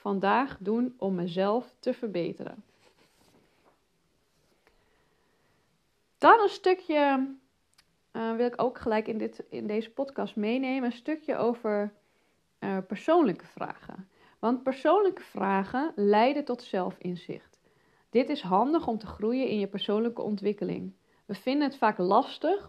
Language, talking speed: Dutch, 120 wpm